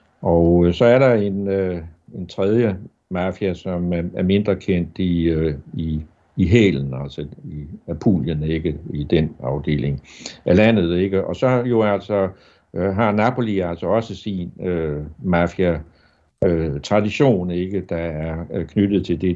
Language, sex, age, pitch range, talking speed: Danish, male, 60-79, 80-100 Hz, 145 wpm